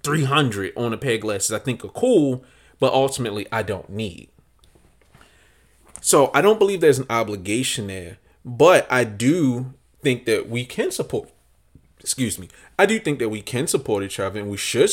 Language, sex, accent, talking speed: English, male, American, 180 wpm